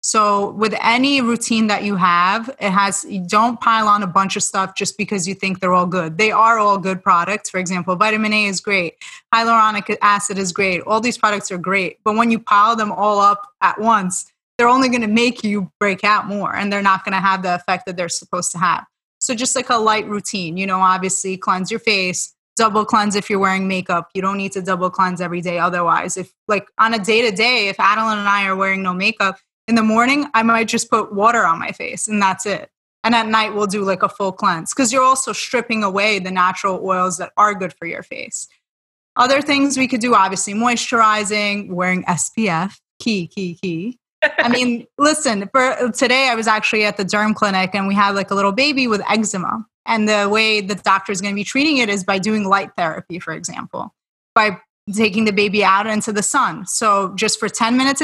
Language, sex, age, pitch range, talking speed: English, female, 20-39, 190-225 Hz, 225 wpm